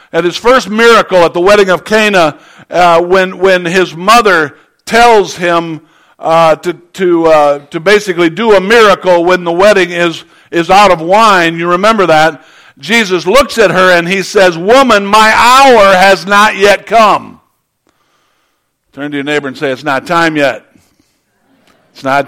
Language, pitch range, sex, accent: English, 175-220 Hz, male, American